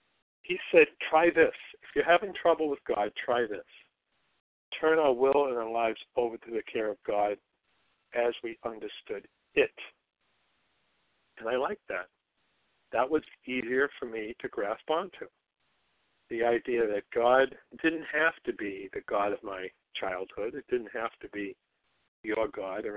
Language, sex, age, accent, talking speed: English, male, 60-79, American, 160 wpm